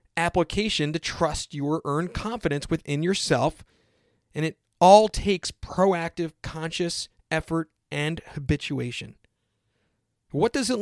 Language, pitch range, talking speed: English, 135-175 Hz, 110 wpm